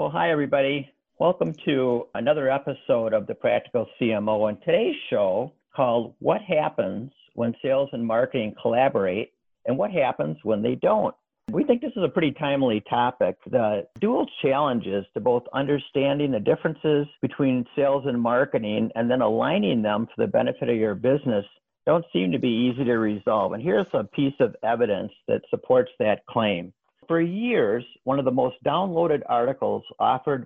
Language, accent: English, American